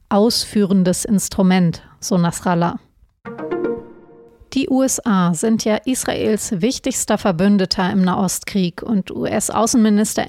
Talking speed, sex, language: 85 wpm, female, German